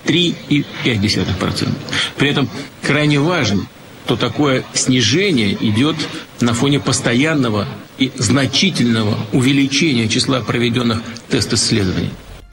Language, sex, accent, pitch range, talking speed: Russian, male, native, 115-150 Hz, 80 wpm